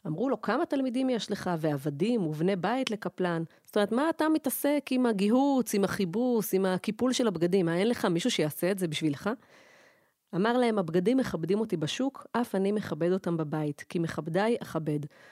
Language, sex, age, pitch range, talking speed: Hebrew, female, 30-49, 175-215 Hz, 175 wpm